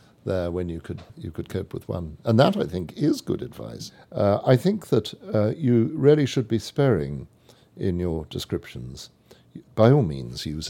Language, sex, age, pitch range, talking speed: English, male, 60-79, 85-130 Hz, 185 wpm